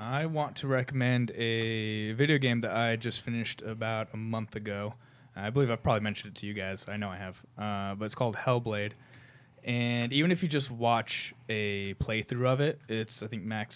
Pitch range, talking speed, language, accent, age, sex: 105-125 Hz, 205 wpm, English, American, 20-39, male